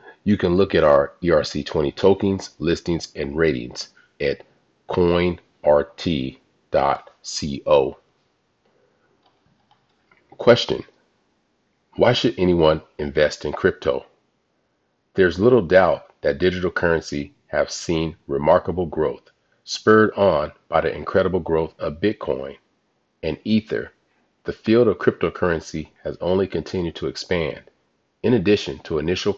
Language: English